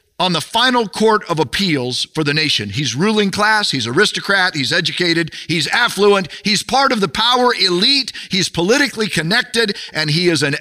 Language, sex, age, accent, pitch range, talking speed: English, male, 50-69, American, 145-220 Hz, 175 wpm